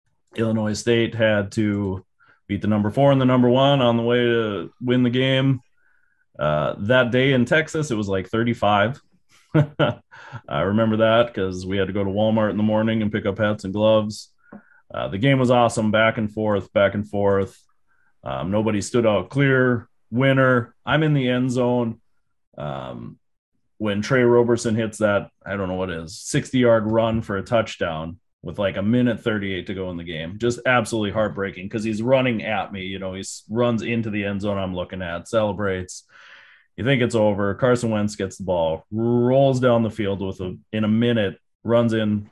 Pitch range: 95-120 Hz